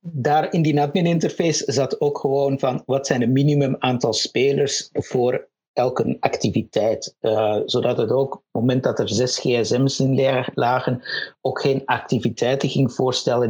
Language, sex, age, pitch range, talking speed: Dutch, male, 50-69, 120-145 Hz, 160 wpm